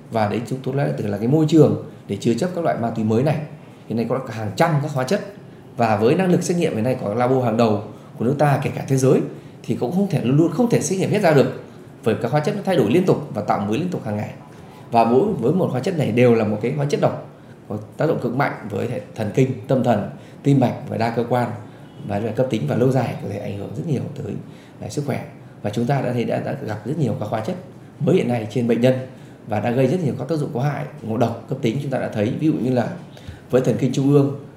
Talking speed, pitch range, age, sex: 290 wpm, 115-150 Hz, 20-39, male